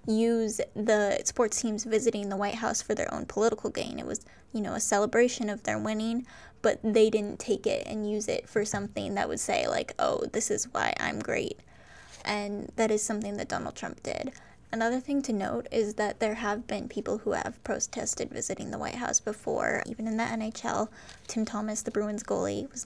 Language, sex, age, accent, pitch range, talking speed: English, female, 10-29, American, 210-235 Hz, 205 wpm